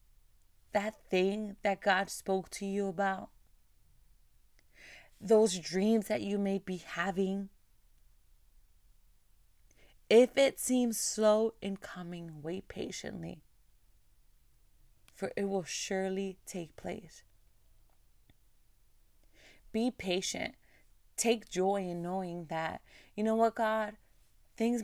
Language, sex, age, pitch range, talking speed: English, female, 20-39, 180-220 Hz, 100 wpm